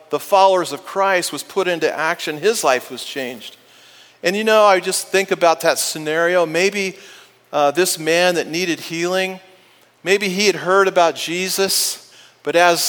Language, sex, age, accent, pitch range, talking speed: English, male, 40-59, American, 150-190 Hz, 170 wpm